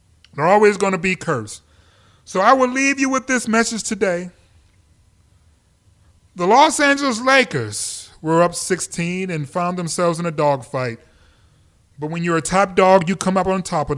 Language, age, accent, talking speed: English, 30-49, American, 170 wpm